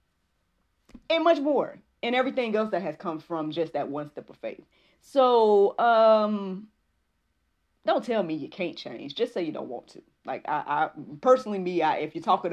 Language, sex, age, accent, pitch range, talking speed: English, female, 30-49, American, 150-210 Hz, 185 wpm